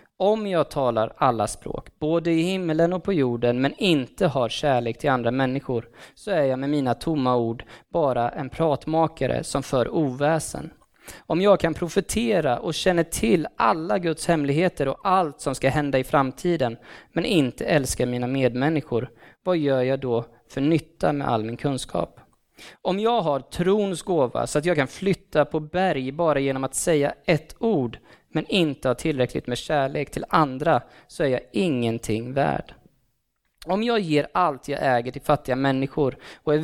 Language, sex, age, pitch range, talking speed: Swedish, male, 20-39, 130-160 Hz, 170 wpm